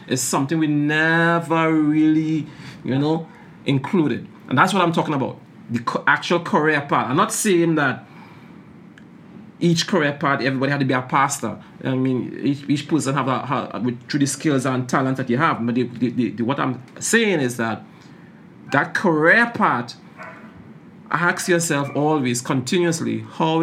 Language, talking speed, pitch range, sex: English, 170 wpm, 125-160 Hz, male